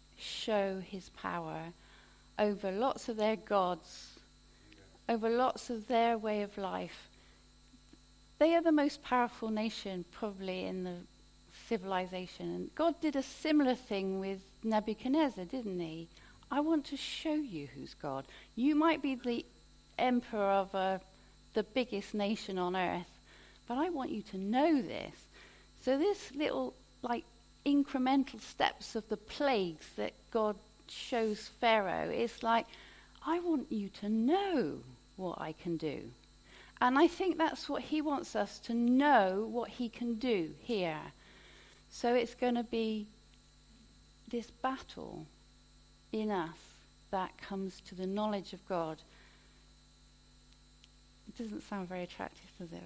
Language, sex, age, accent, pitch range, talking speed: English, female, 40-59, British, 190-255 Hz, 140 wpm